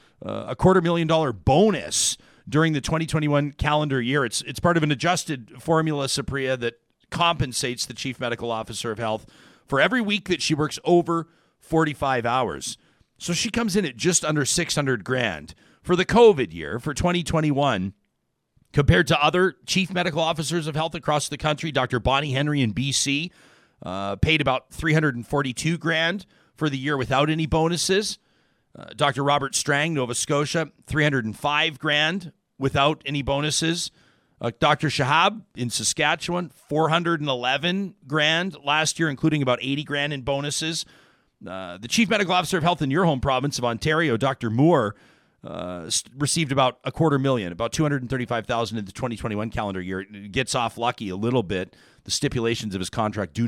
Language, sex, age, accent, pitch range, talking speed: English, male, 40-59, American, 115-160 Hz, 175 wpm